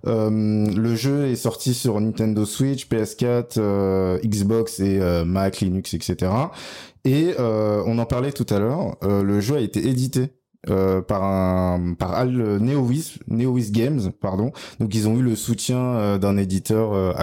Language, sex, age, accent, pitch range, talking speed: French, male, 20-39, French, 100-125 Hz, 165 wpm